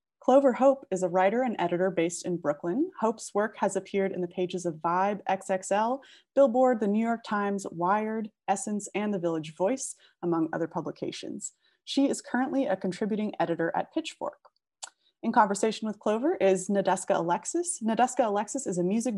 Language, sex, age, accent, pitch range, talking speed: English, female, 20-39, American, 180-230 Hz, 170 wpm